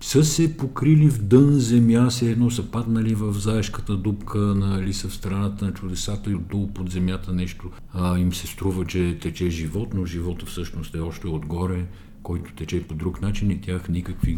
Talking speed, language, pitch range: 190 wpm, Bulgarian, 85-105 Hz